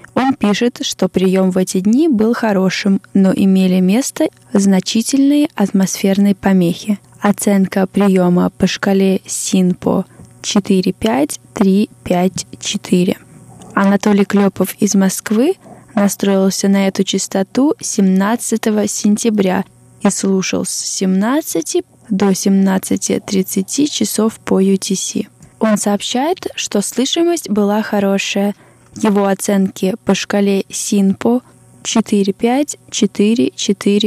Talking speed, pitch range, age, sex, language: 90 wpm, 195-225 Hz, 20-39, female, Russian